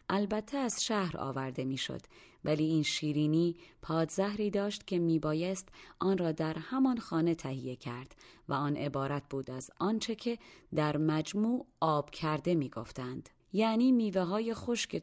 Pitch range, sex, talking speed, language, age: 145-200 Hz, female, 145 wpm, Persian, 30-49